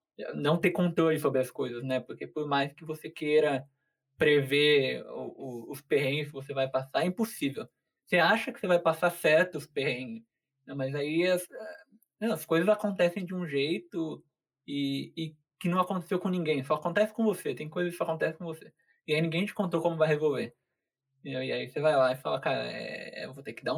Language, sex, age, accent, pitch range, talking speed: Portuguese, male, 20-39, Brazilian, 135-180 Hz, 200 wpm